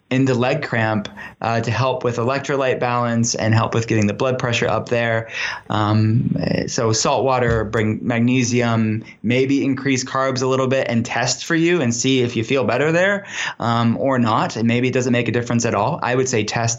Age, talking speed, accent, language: 20-39, 205 wpm, American, English